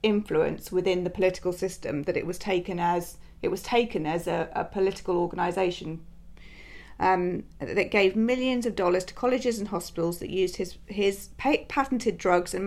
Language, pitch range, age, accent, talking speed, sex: English, 180-210 Hz, 40-59, British, 165 wpm, female